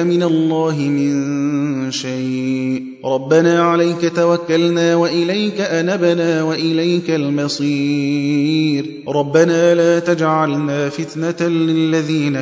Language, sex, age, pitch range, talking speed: Arabic, male, 30-49, 140-170 Hz, 75 wpm